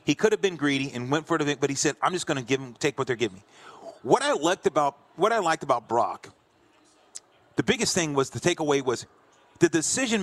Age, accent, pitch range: 40-59, American, 155-210 Hz